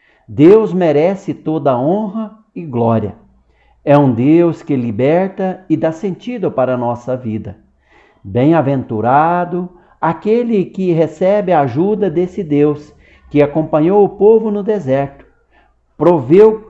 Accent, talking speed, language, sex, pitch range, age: Brazilian, 120 wpm, Portuguese, male, 140-195 Hz, 60-79